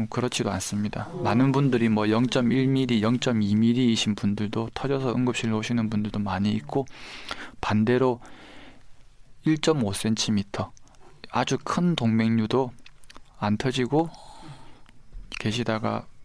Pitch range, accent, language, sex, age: 110-130 Hz, native, Korean, male, 20-39